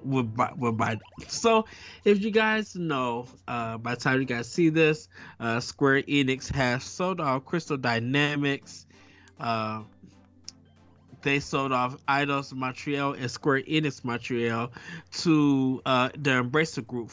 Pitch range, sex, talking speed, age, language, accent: 115-155 Hz, male, 140 wpm, 20-39, English, American